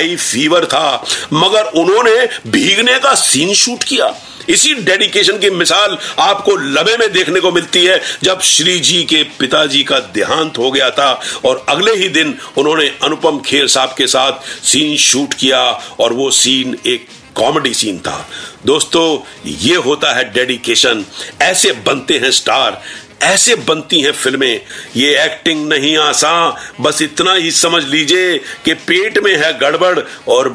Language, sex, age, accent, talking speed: Hindi, male, 50-69, native, 135 wpm